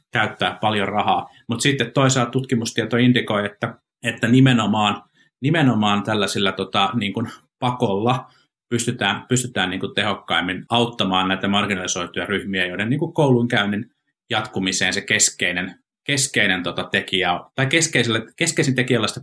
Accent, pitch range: native, 95-125 Hz